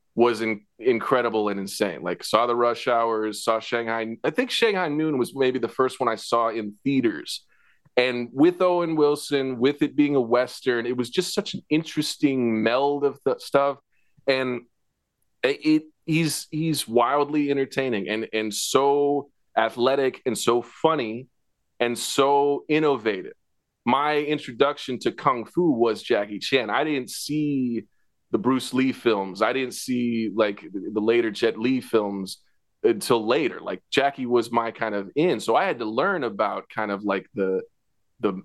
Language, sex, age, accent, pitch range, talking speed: English, male, 30-49, American, 110-140 Hz, 165 wpm